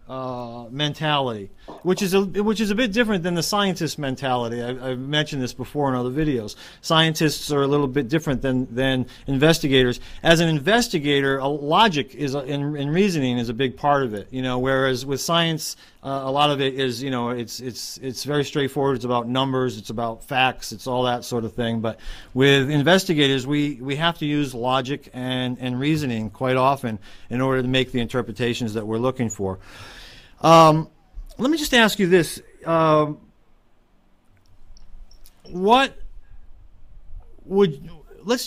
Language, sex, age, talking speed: English, male, 40-59, 175 wpm